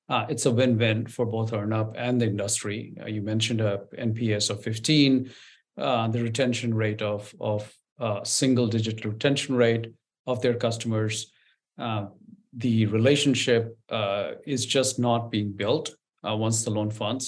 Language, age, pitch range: English, 50-69, 115-130 Hz